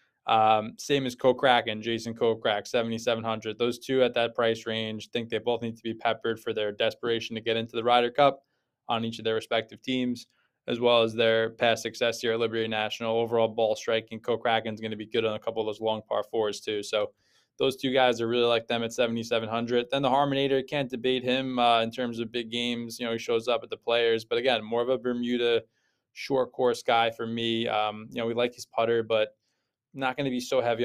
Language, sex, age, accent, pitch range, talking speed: English, male, 20-39, American, 110-125 Hz, 230 wpm